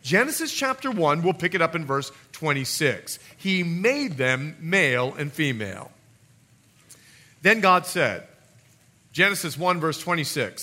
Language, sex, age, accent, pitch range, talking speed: English, male, 40-59, American, 130-190 Hz, 130 wpm